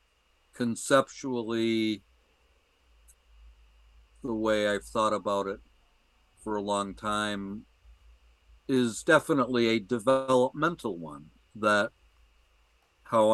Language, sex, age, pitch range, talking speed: English, male, 50-69, 75-115 Hz, 80 wpm